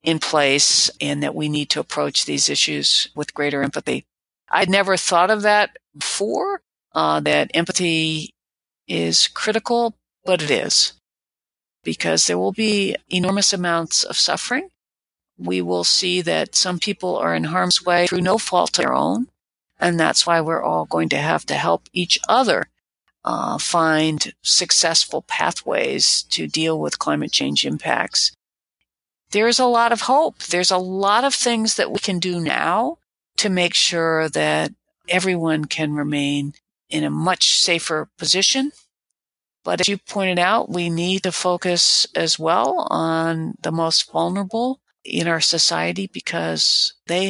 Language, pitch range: English, 155-200 Hz